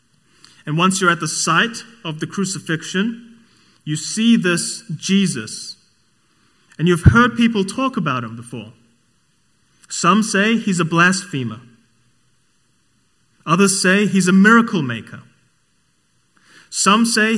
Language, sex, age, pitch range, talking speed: English, male, 30-49, 140-190 Hz, 115 wpm